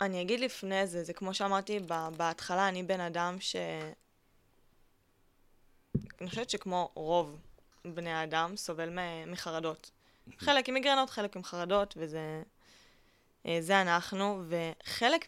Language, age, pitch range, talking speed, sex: Hebrew, 10-29, 165-195 Hz, 120 wpm, female